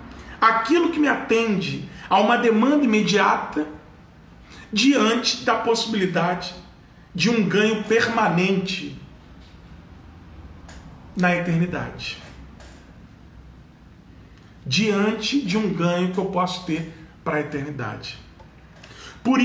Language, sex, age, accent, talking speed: Portuguese, male, 40-59, Brazilian, 90 wpm